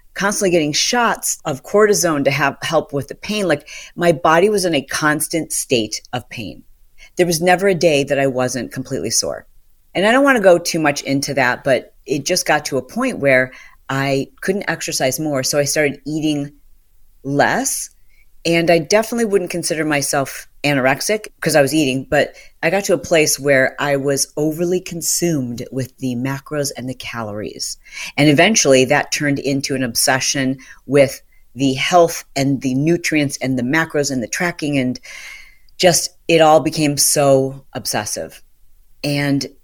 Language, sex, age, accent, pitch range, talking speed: English, female, 40-59, American, 135-170 Hz, 170 wpm